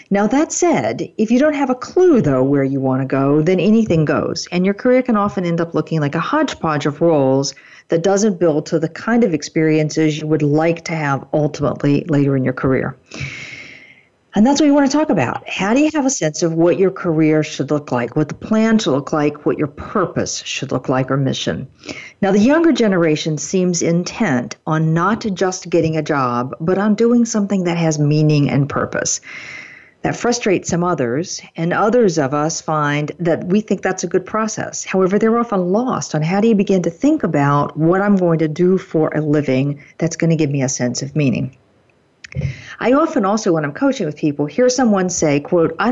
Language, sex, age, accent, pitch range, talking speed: English, female, 50-69, American, 150-205 Hz, 215 wpm